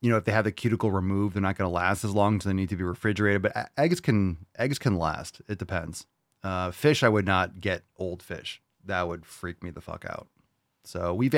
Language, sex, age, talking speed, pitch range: English, male, 30-49, 235 wpm, 90-115 Hz